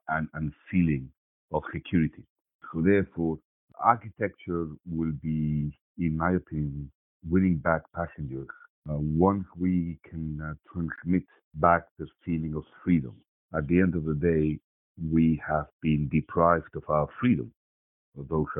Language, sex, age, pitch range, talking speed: English, male, 50-69, 75-90 Hz, 130 wpm